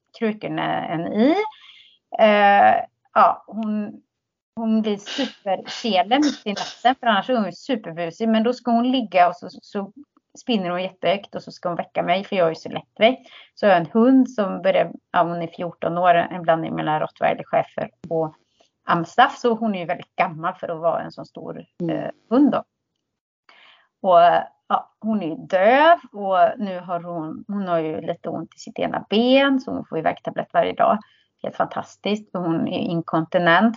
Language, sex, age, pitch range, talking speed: Swedish, female, 30-49, 175-235 Hz, 180 wpm